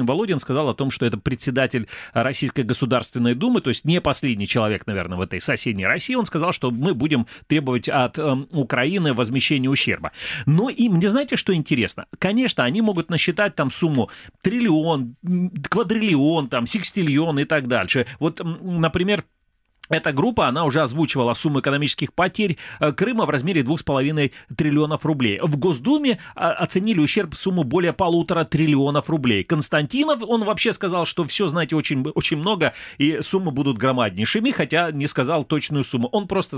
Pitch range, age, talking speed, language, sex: 125-170 Hz, 30-49, 155 wpm, Russian, male